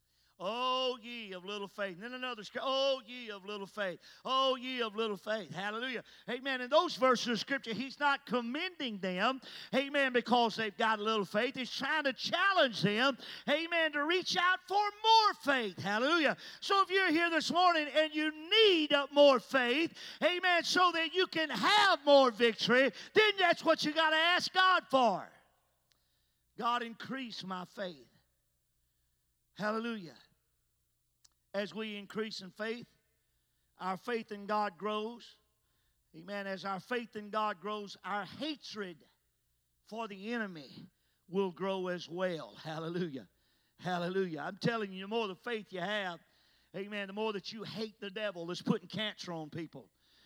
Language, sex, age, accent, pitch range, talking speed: English, male, 40-59, American, 190-275 Hz, 160 wpm